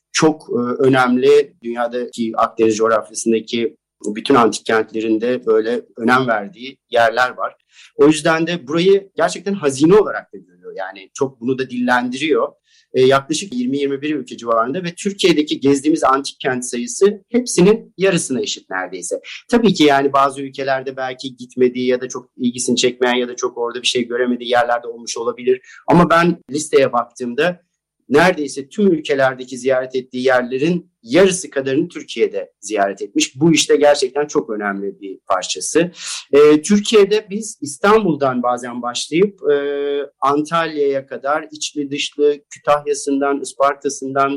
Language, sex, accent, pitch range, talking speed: Turkish, male, native, 130-170 Hz, 130 wpm